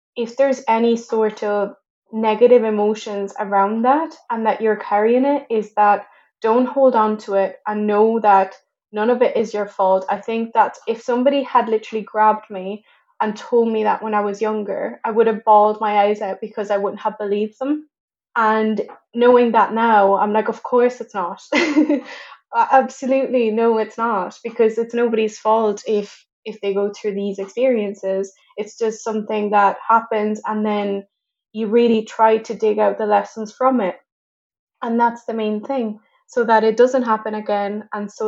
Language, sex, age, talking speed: English, female, 10-29, 180 wpm